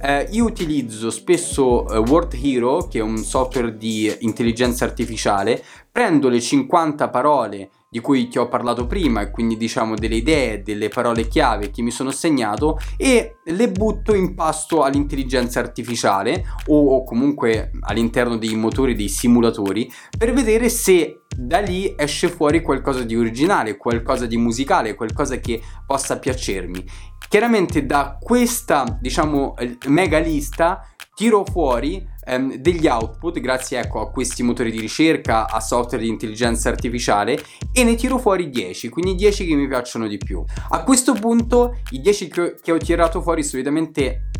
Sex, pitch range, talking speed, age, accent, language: male, 115-160 Hz, 155 wpm, 20-39, native, Italian